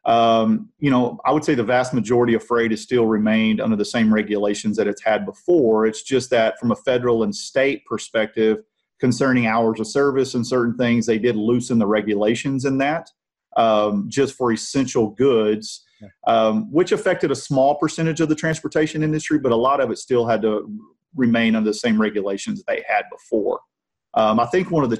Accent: American